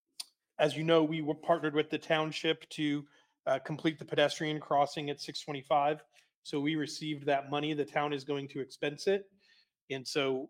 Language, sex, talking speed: English, male, 175 wpm